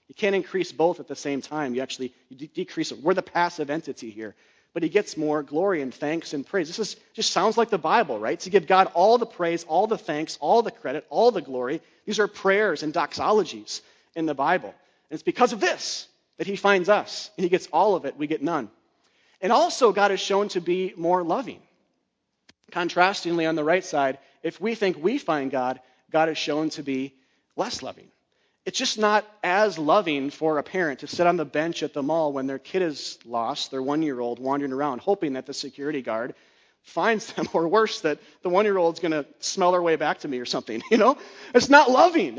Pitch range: 150-210 Hz